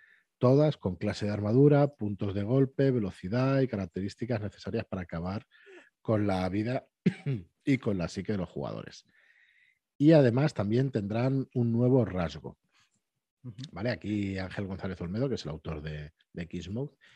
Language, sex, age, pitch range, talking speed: Spanish, male, 40-59, 95-135 Hz, 145 wpm